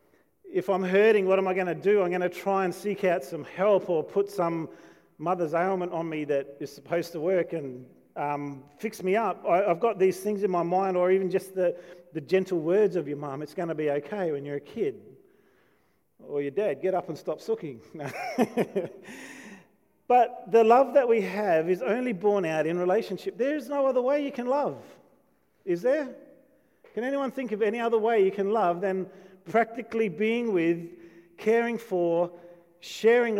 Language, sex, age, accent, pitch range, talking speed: English, male, 40-59, Australian, 145-210 Hz, 195 wpm